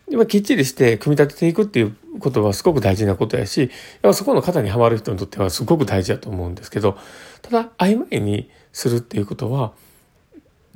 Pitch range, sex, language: 100-155 Hz, male, Japanese